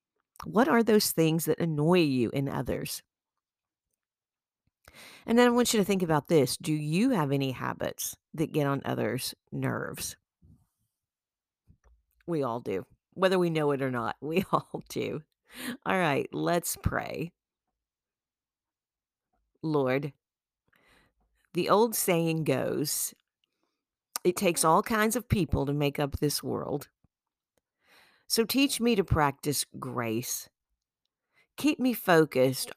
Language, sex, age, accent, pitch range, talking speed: English, female, 50-69, American, 135-185 Hz, 125 wpm